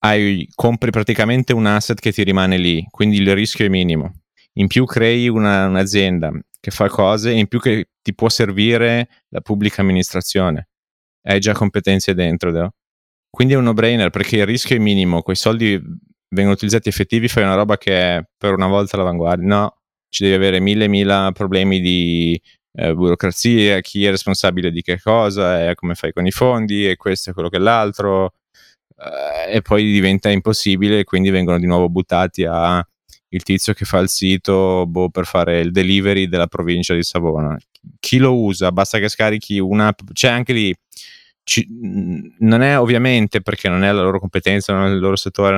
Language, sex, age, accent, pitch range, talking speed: Italian, male, 30-49, native, 95-110 Hz, 185 wpm